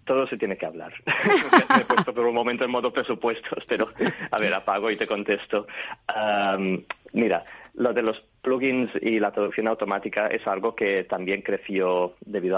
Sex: male